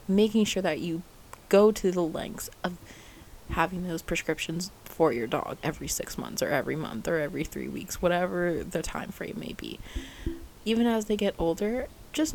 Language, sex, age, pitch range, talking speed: English, female, 20-39, 170-210 Hz, 180 wpm